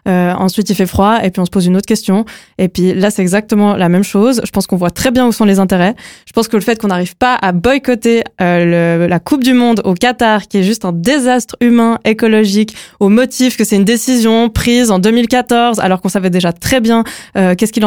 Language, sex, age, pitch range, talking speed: French, female, 20-39, 185-220 Hz, 245 wpm